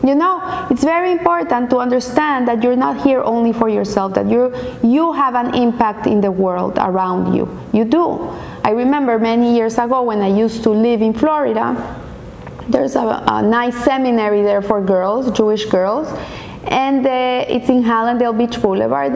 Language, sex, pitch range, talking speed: English, female, 225-280 Hz, 175 wpm